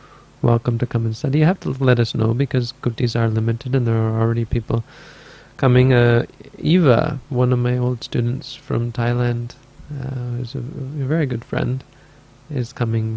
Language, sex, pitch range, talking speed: English, male, 120-140 Hz, 180 wpm